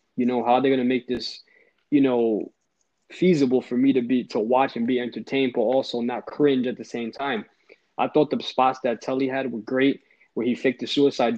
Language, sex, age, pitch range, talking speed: English, male, 20-39, 120-140 Hz, 215 wpm